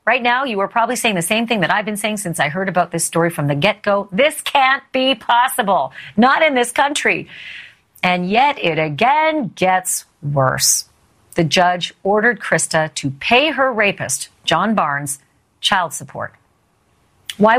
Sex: female